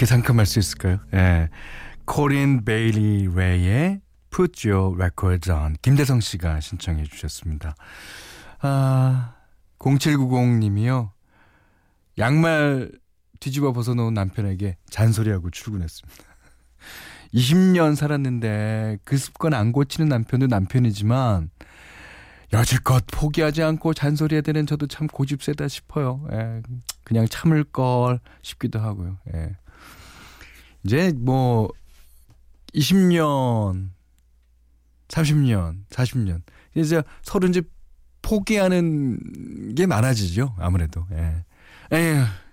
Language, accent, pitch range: Korean, native, 90-140 Hz